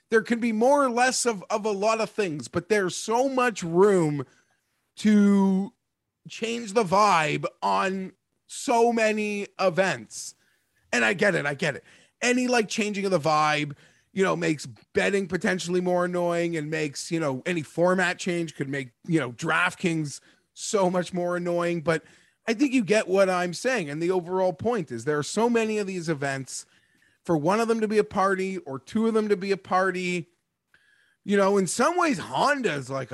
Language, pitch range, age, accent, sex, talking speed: English, 145-210 Hz, 30-49, American, male, 190 wpm